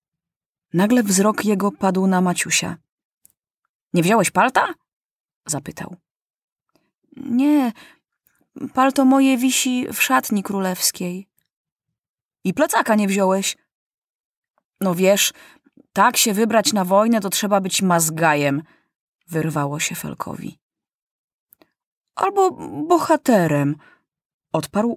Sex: female